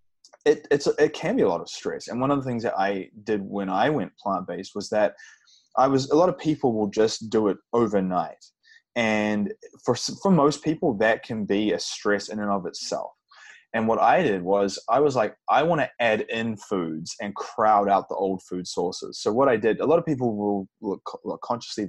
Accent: Australian